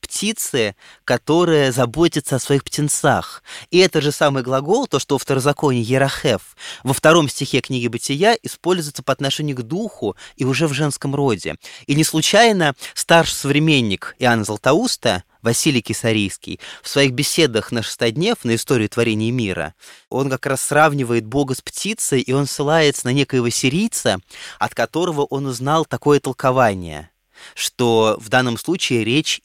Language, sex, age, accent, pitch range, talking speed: Russian, male, 20-39, native, 120-155 Hz, 150 wpm